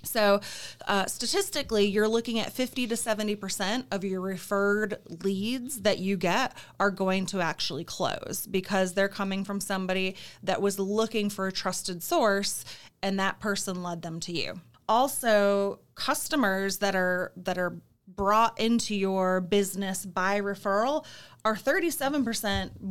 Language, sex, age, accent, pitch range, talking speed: English, female, 30-49, American, 185-215 Hz, 145 wpm